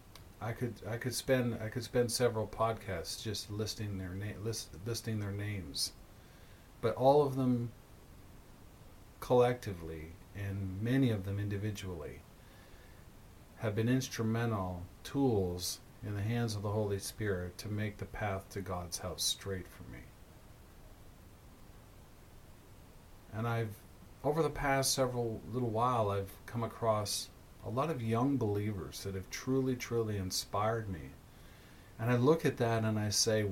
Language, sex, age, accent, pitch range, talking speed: English, male, 40-59, American, 95-120 Hz, 140 wpm